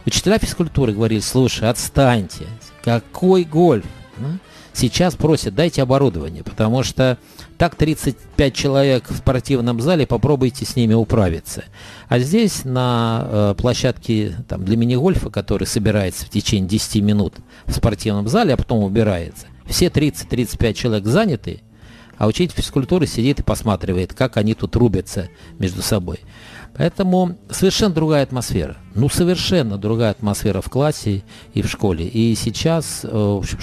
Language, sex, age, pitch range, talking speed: Russian, male, 50-69, 105-130 Hz, 130 wpm